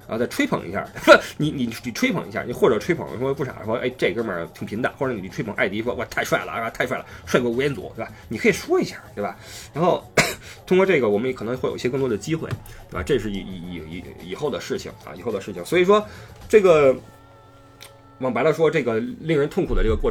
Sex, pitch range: male, 105-140 Hz